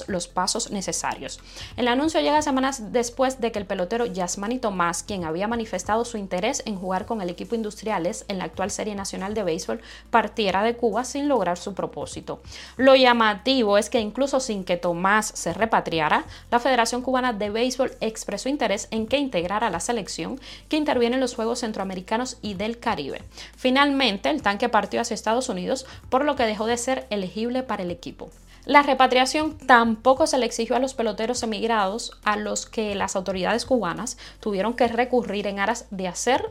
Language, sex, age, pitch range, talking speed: Spanish, female, 20-39, 205-250 Hz, 180 wpm